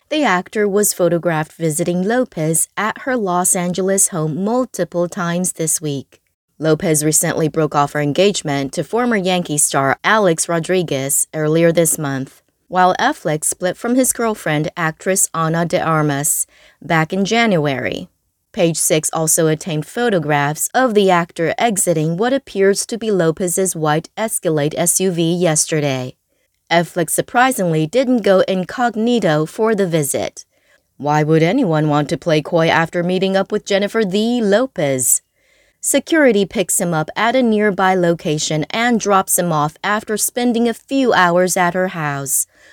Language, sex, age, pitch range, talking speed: English, female, 20-39, 155-210 Hz, 145 wpm